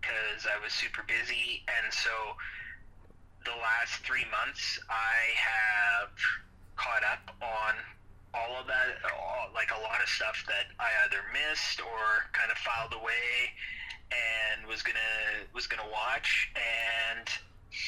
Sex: male